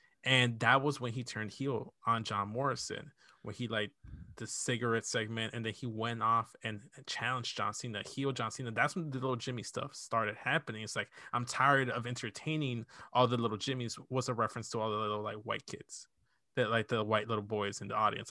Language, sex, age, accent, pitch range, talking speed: English, male, 20-39, American, 110-130 Hz, 215 wpm